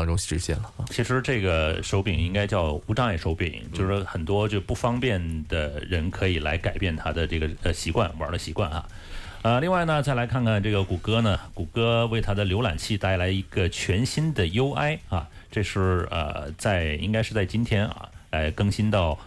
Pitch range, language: 90-115 Hz, Chinese